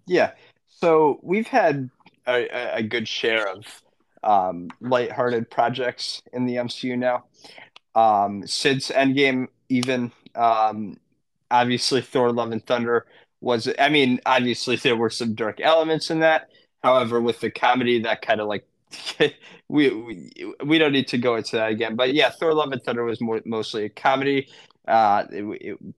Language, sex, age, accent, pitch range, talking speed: English, male, 20-39, American, 115-135 Hz, 160 wpm